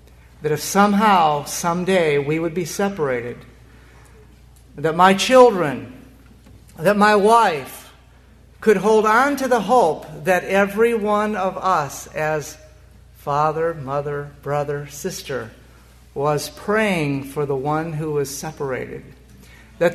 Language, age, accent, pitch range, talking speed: English, 50-69, American, 150-215 Hz, 115 wpm